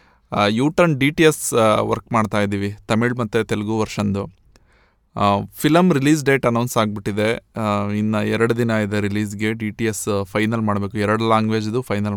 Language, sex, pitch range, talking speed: Kannada, male, 105-140 Hz, 145 wpm